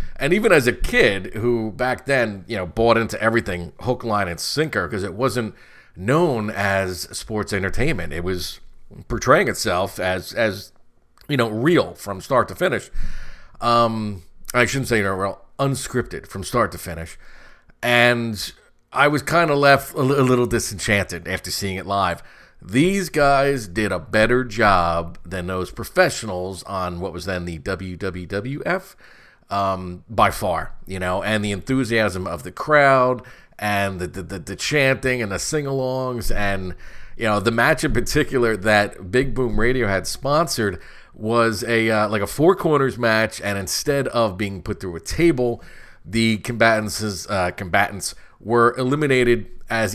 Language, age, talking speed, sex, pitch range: English, 40-59, 160 wpm, male, 95-125 Hz